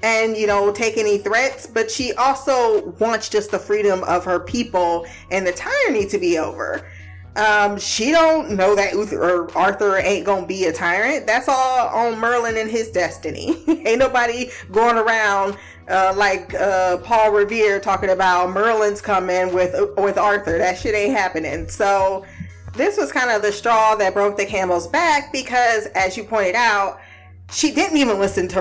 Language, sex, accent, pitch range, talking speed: English, female, American, 195-260 Hz, 175 wpm